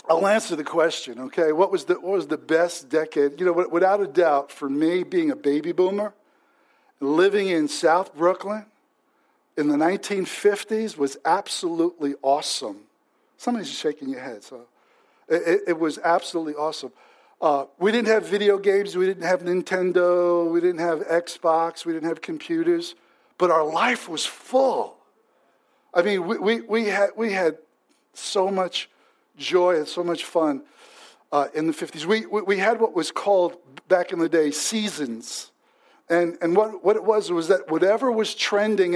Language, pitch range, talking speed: English, 165-220 Hz, 165 wpm